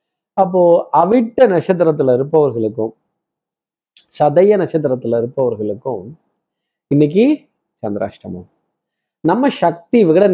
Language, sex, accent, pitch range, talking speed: Tamil, male, native, 150-195 Hz, 70 wpm